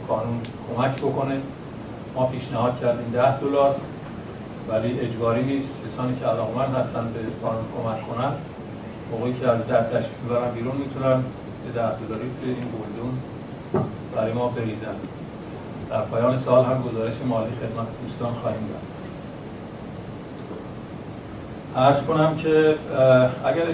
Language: Persian